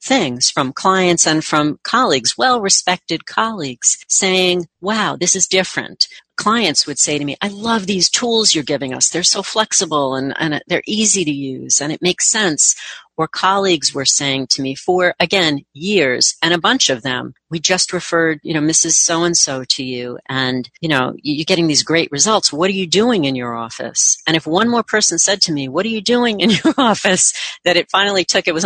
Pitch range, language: 140-190 Hz, English